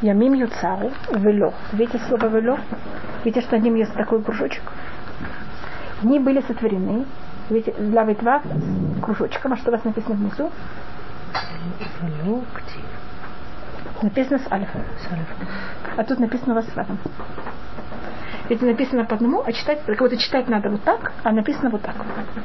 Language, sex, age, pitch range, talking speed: Russian, female, 30-49, 220-265 Hz, 140 wpm